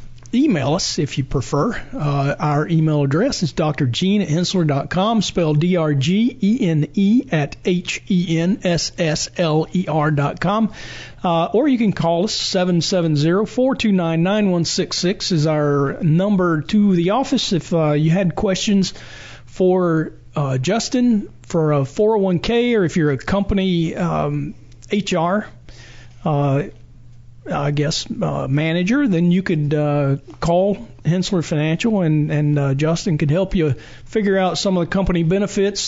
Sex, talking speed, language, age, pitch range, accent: male, 120 wpm, English, 40-59, 150-195 Hz, American